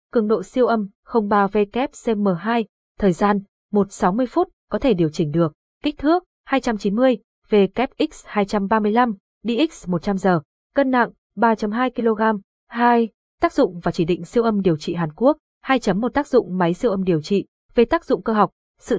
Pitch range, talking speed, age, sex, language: 190-245 Hz, 160 wpm, 20-39, female, Vietnamese